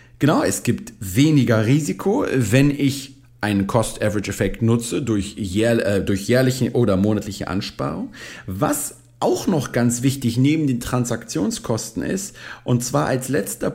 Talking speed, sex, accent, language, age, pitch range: 120 wpm, male, German, German, 40-59, 105-135 Hz